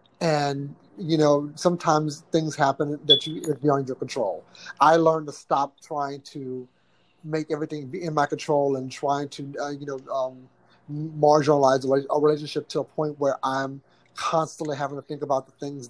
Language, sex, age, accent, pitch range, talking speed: English, male, 30-49, American, 140-175 Hz, 175 wpm